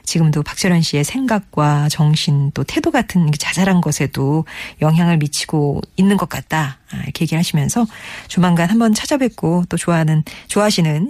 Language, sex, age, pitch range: Korean, female, 40-59, 150-215 Hz